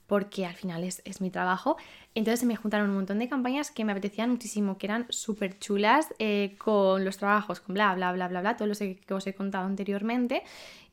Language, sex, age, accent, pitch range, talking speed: Spanish, female, 10-29, Spanish, 190-225 Hz, 225 wpm